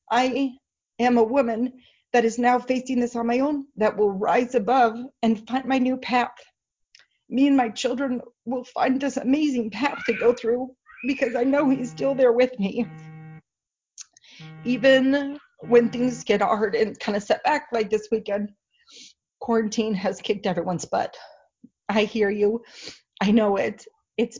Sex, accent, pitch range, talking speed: female, American, 200-245 Hz, 160 wpm